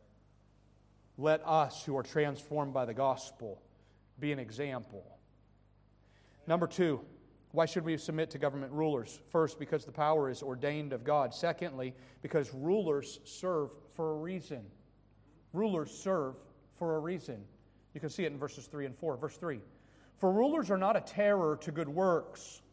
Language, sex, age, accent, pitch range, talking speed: English, male, 40-59, American, 135-190 Hz, 160 wpm